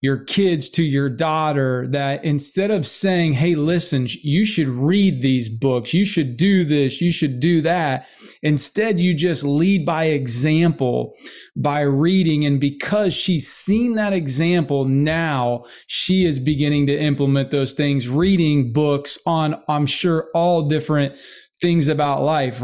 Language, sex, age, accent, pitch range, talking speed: English, male, 20-39, American, 145-175 Hz, 150 wpm